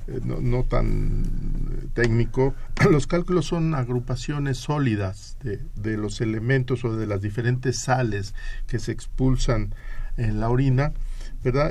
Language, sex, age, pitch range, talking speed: Spanish, male, 50-69, 115-130 Hz, 130 wpm